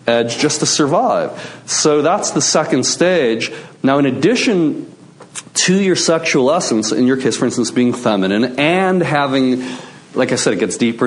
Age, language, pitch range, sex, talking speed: 40-59, English, 110-150 Hz, male, 170 wpm